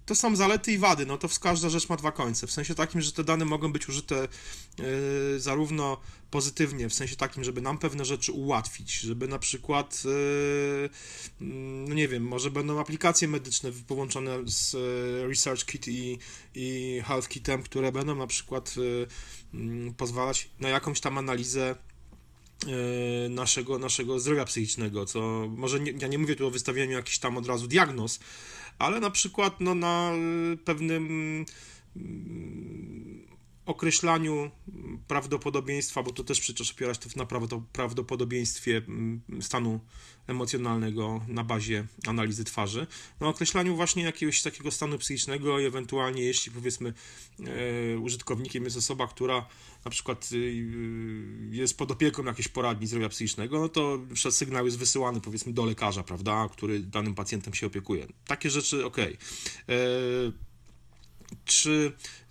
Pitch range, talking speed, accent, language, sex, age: 115-145 Hz, 135 wpm, native, Polish, male, 30-49